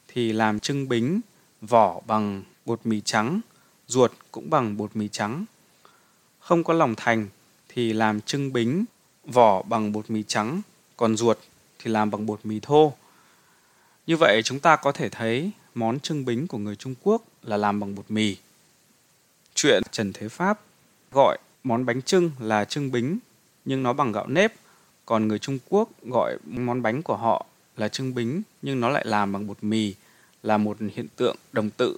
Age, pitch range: 20-39, 110-155 Hz